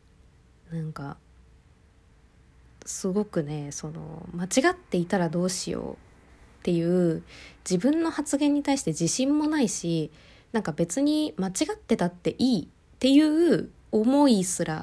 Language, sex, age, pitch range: Japanese, female, 20-39, 160-215 Hz